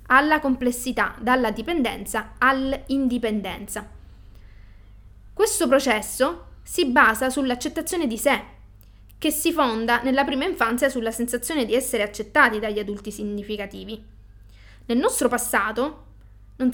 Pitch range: 215-270 Hz